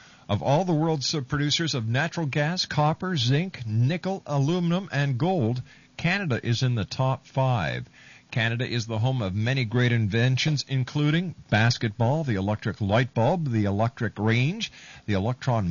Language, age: English, 50-69